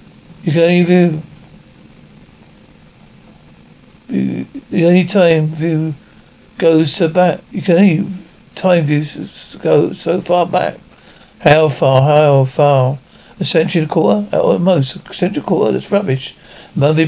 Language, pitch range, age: English, 150-175 Hz, 50-69